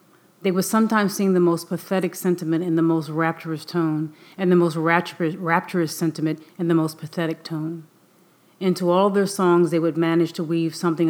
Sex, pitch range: female, 160-180 Hz